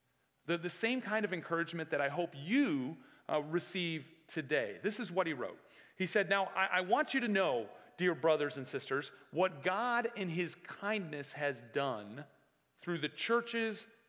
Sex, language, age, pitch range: male, English, 40-59, 150-185 Hz